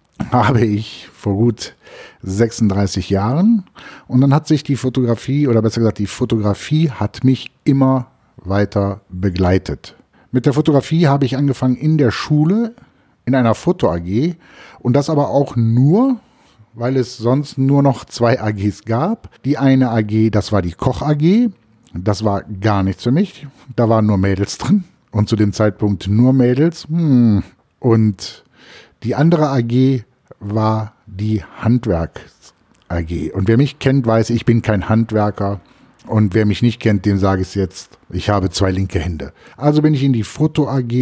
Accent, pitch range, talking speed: German, 105-135 Hz, 155 wpm